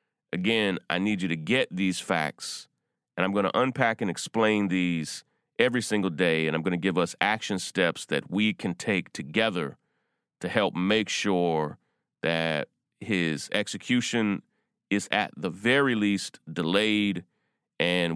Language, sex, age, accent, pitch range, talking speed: English, male, 30-49, American, 90-115 Hz, 150 wpm